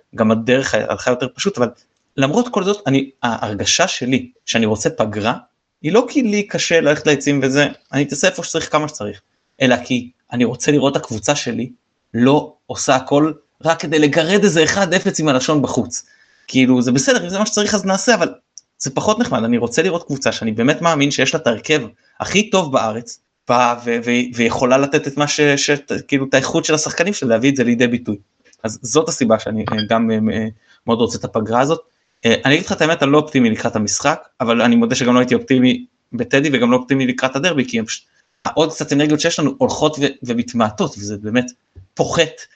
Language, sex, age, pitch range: Hebrew, male, 20-39, 120-150 Hz